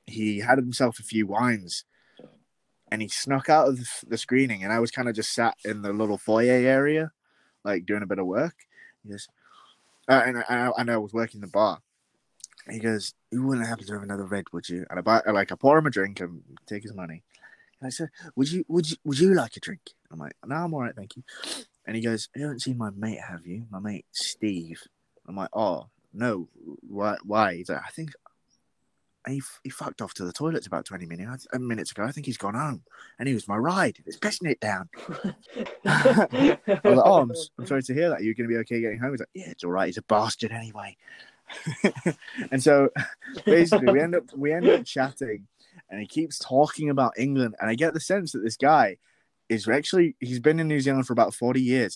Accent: British